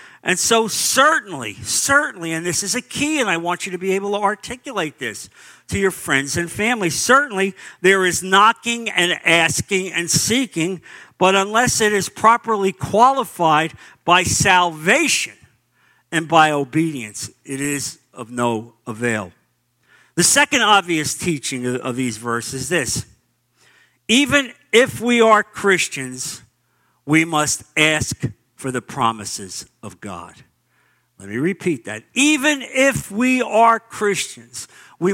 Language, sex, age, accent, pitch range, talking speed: English, male, 50-69, American, 130-200 Hz, 135 wpm